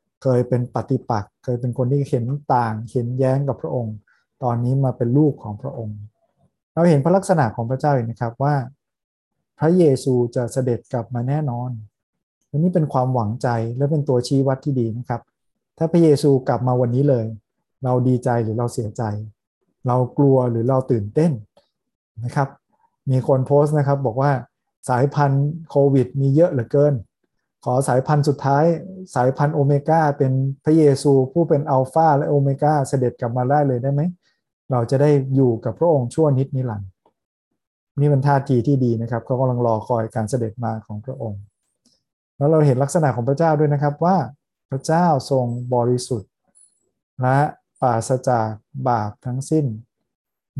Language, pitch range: Thai, 120-145 Hz